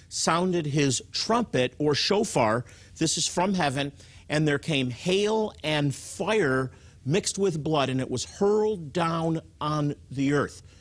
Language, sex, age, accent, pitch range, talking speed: English, male, 50-69, American, 110-150 Hz, 145 wpm